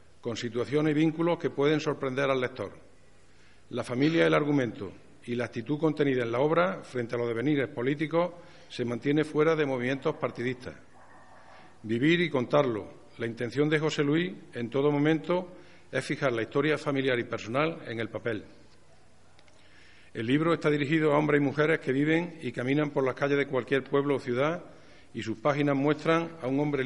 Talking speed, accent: 180 wpm, Spanish